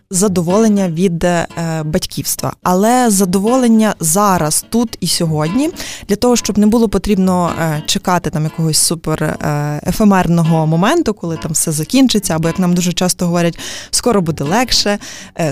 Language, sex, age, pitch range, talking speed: Ukrainian, female, 20-39, 170-220 Hz, 145 wpm